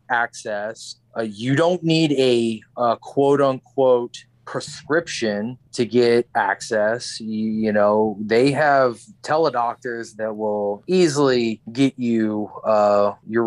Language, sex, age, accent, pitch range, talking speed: English, male, 30-49, American, 110-130 Hz, 115 wpm